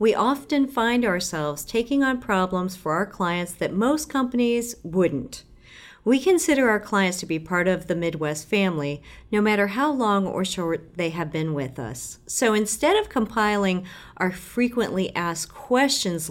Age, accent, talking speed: 40-59, American, 160 wpm